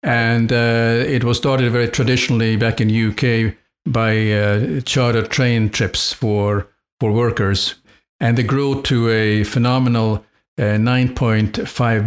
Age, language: 50-69, English